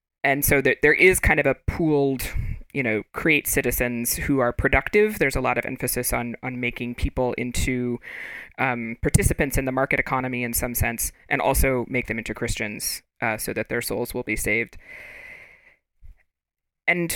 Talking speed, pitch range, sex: 175 wpm, 125-155 Hz, female